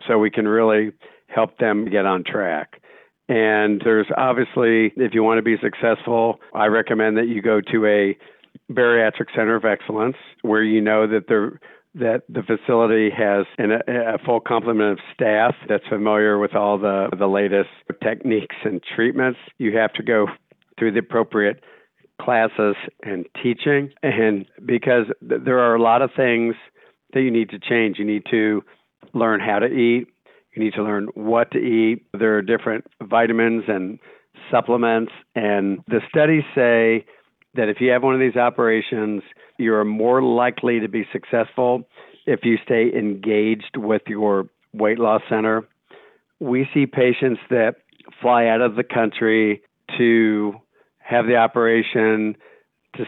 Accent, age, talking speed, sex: American, 50-69, 155 wpm, male